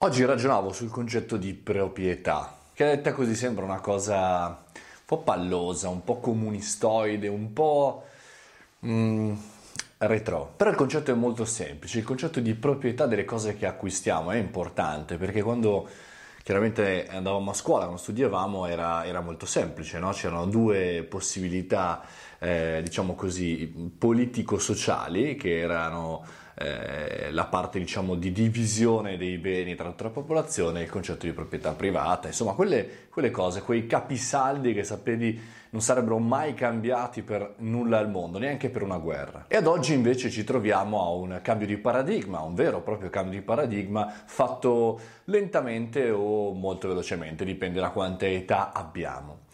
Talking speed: 150 wpm